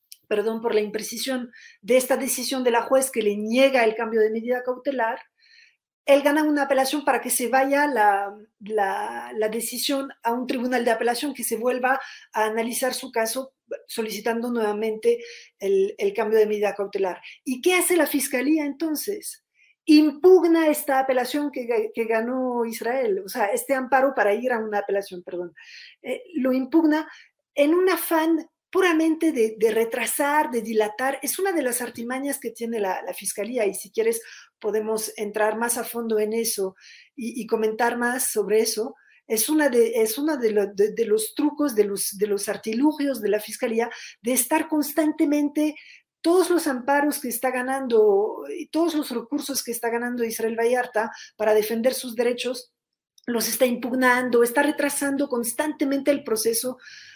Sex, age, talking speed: female, 40-59, 165 wpm